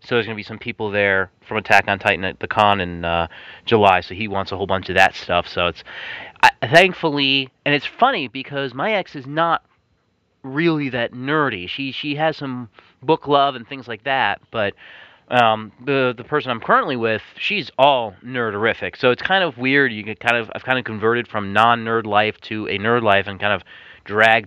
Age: 30-49